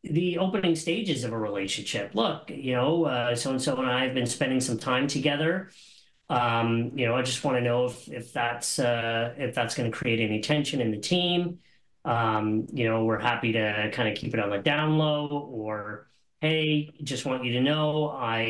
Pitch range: 110-145 Hz